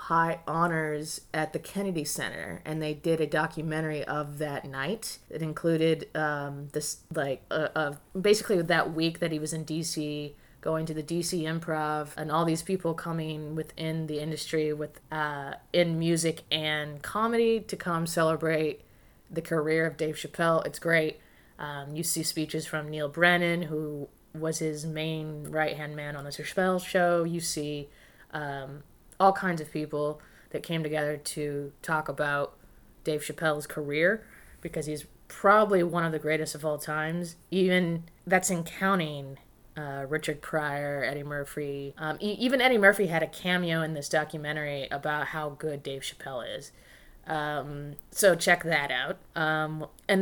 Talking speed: 160 wpm